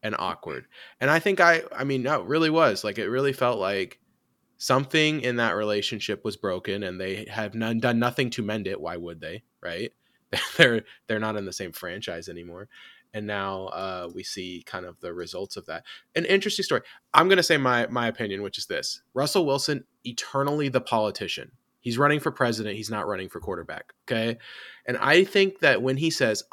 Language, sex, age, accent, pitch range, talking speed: English, male, 20-39, American, 115-150 Hz, 205 wpm